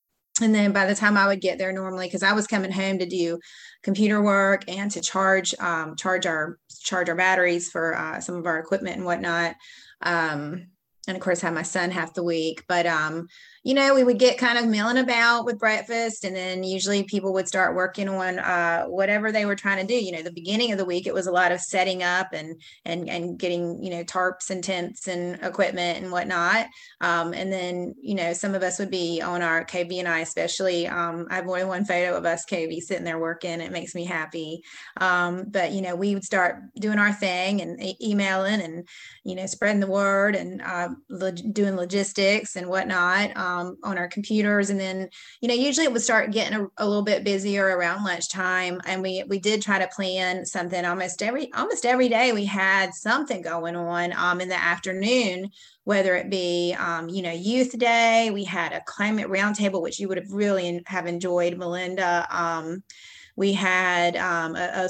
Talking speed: 210 wpm